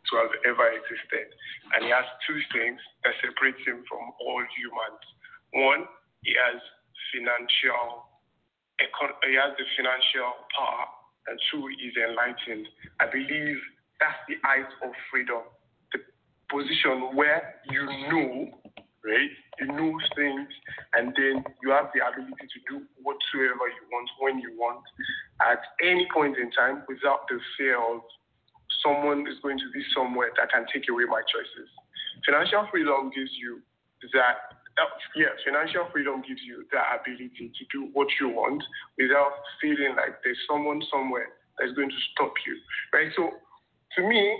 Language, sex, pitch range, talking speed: English, male, 130-205 Hz, 150 wpm